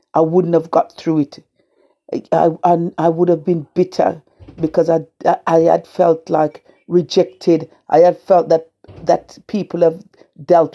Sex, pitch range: female, 155-180 Hz